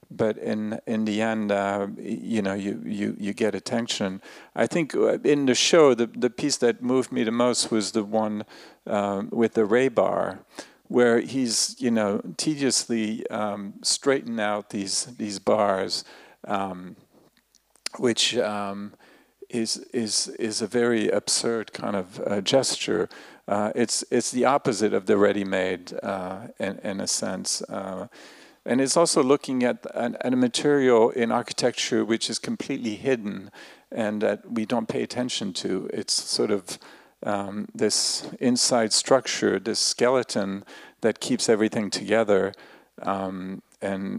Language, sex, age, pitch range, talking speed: English, male, 50-69, 100-125 Hz, 150 wpm